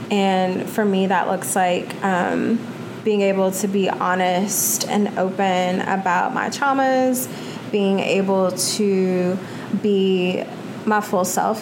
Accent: American